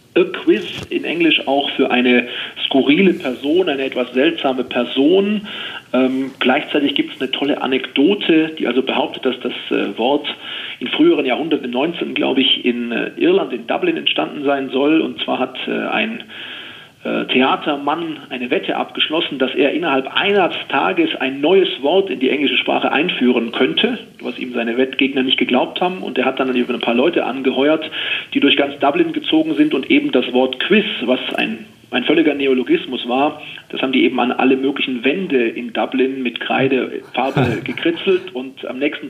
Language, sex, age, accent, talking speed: German, male, 40-59, German, 170 wpm